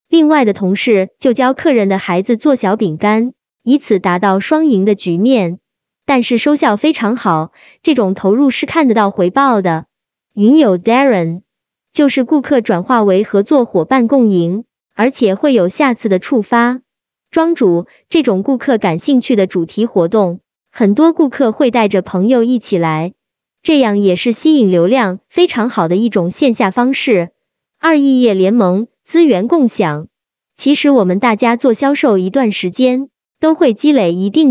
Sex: male